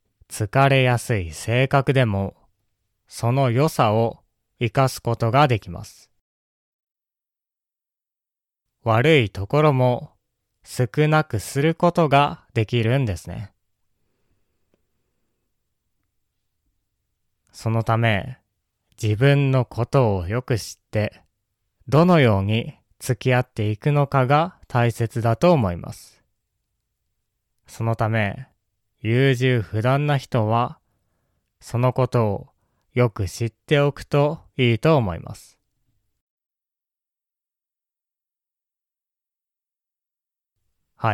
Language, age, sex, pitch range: Japanese, 20-39, male, 100-130 Hz